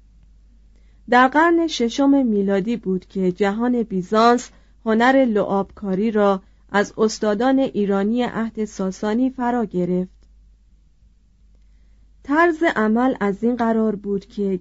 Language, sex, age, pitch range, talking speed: Persian, female, 30-49, 200-255 Hz, 100 wpm